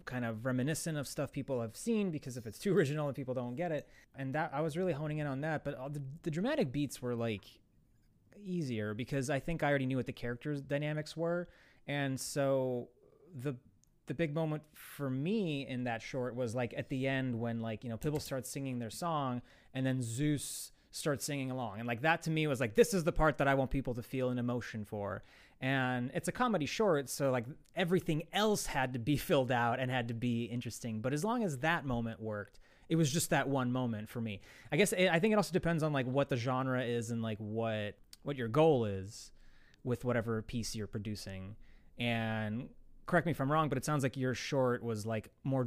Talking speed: 225 wpm